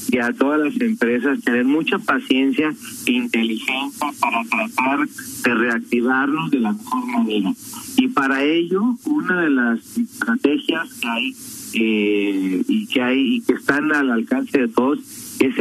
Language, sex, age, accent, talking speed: Spanish, male, 40-59, Mexican, 150 wpm